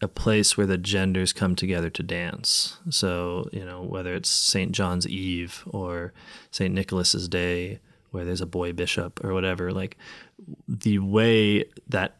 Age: 30-49